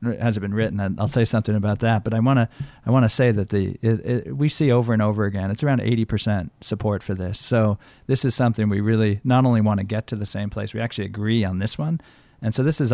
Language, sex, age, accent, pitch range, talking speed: English, male, 40-59, American, 105-120 Hz, 260 wpm